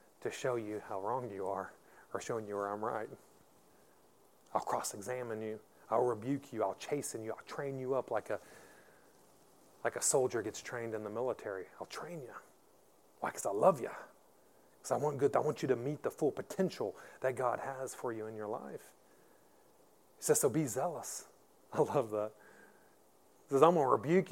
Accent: American